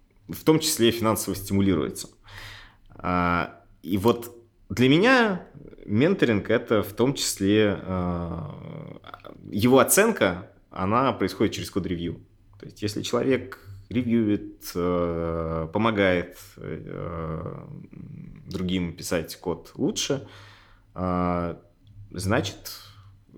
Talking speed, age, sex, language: 80 wpm, 20-39, male, Russian